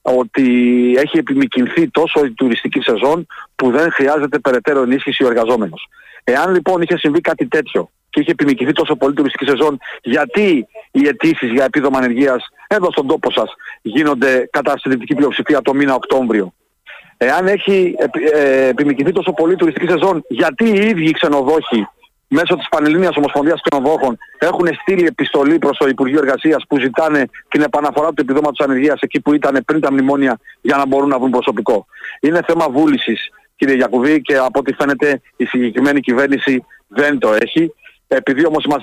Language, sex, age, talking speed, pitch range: Greek, male, 40-59, 160 wpm, 135-165 Hz